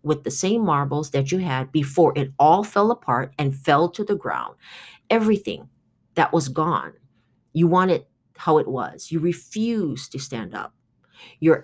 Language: English